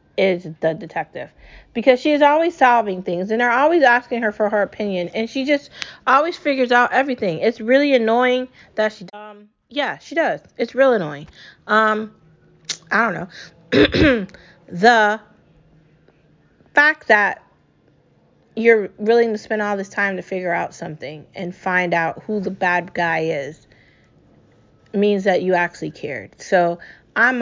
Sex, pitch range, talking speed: female, 175-235 Hz, 150 wpm